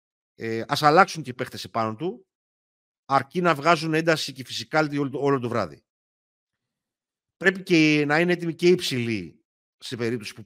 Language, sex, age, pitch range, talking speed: Greek, male, 50-69, 100-135 Hz, 155 wpm